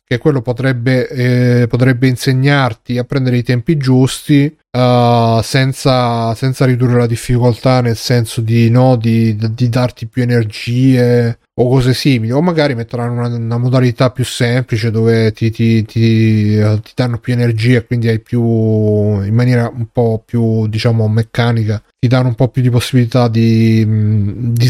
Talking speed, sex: 160 wpm, male